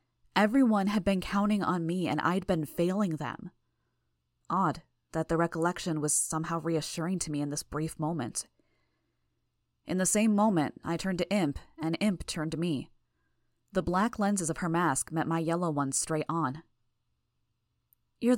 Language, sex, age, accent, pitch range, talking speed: English, female, 20-39, American, 120-180 Hz, 165 wpm